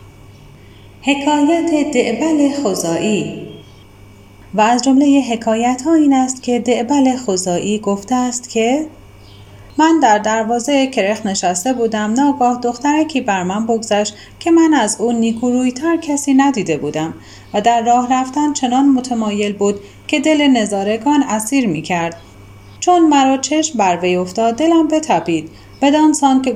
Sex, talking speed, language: female, 135 wpm, Persian